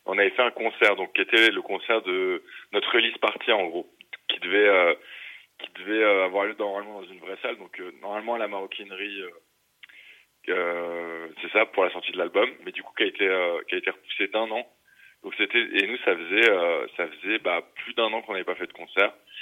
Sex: male